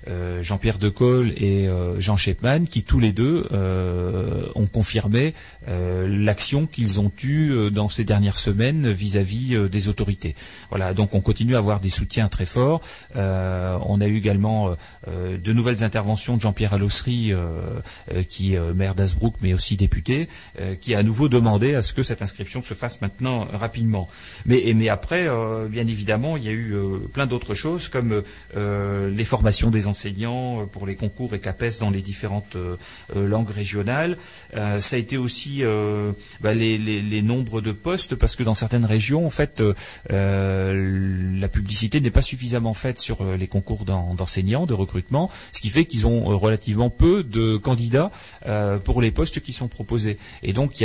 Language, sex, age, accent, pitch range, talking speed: French, male, 30-49, French, 100-120 Hz, 185 wpm